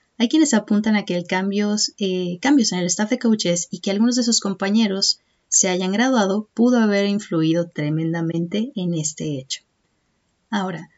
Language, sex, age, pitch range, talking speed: Spanish, female, 30-49, 175-235 Hz, 170 wpm